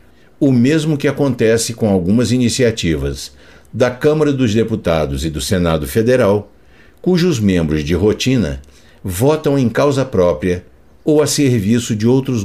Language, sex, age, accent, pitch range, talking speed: Portuguese, male, 60-79, Brazilian, 85-130 Hz, 135 wpm